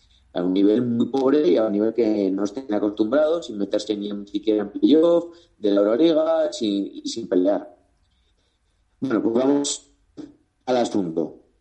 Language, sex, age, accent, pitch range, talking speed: Spanish, male, 30-49, Spanish, 100-150 Hz, 165 wpm